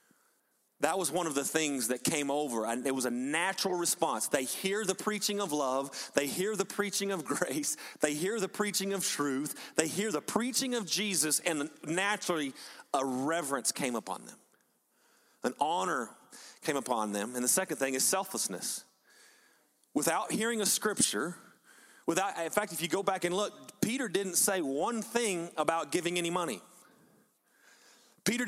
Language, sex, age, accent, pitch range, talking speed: English, male, 30-49, American, 165-220 Hz, 170 wpm